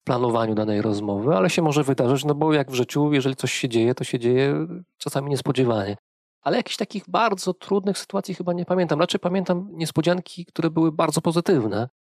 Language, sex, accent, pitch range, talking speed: Polish, male, native, 120-160 Hz, 185 wpm